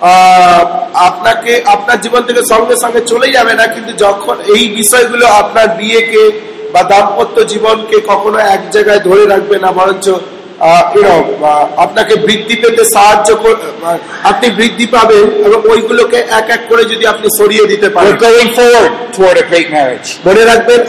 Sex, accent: male, native